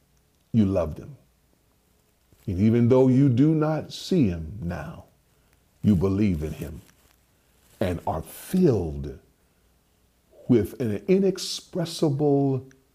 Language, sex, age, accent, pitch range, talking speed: English, male, 40-59, American, 90-120 Hz, 100 wpm